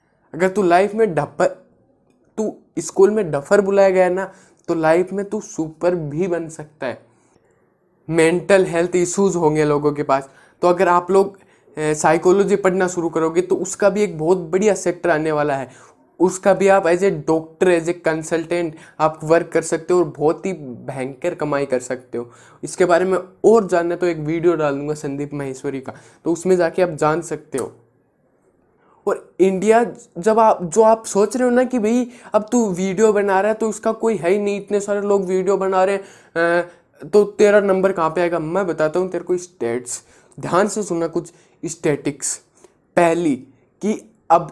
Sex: male